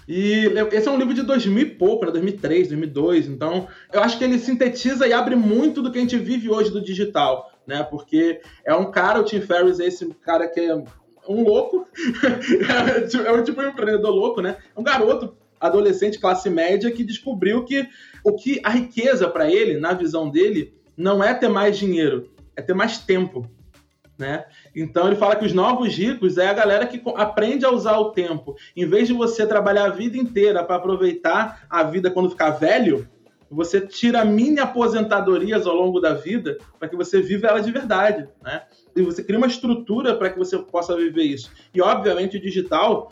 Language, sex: Portuguese, male